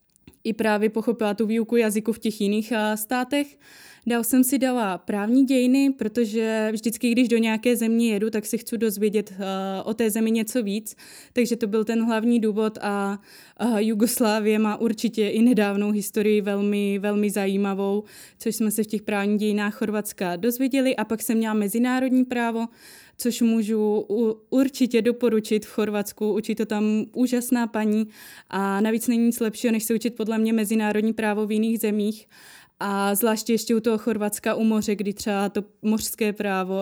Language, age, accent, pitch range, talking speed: Czech, 20-39, native, 210-230 Hz, 165 wpm